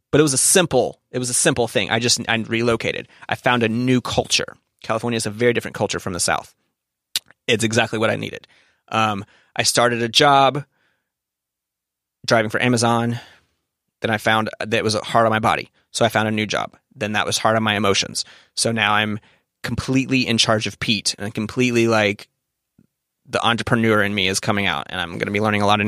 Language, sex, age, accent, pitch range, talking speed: English, male, 30-49, American, 105-120 Hz, 210 wpm